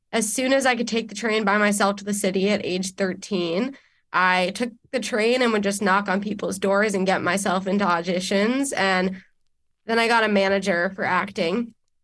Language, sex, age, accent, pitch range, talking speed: English, female, 20-39, American, 190-230 Hz, 200 wpm